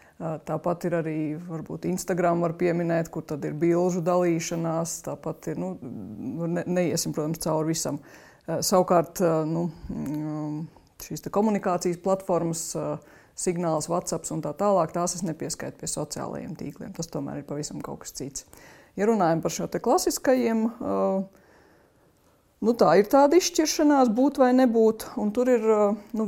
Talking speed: 130 wpm